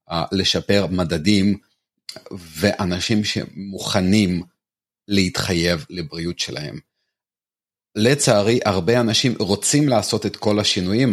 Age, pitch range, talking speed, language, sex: 30-49, 95-110 Hz, 85 wpm, Hebrew, male